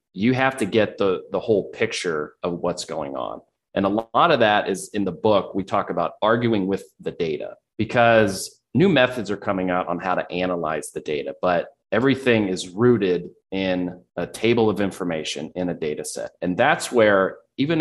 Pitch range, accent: 85-105 Hz, American